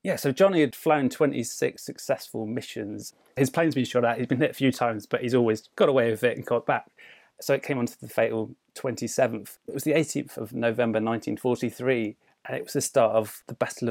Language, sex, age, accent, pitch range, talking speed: English, male, 30-49, British, 110-135 Hz, 225 wpm